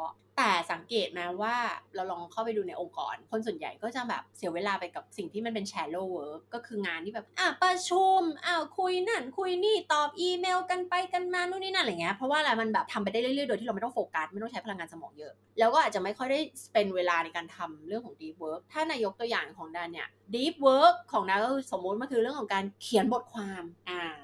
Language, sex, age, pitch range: Thai, female, 20-39, 195-295 Hz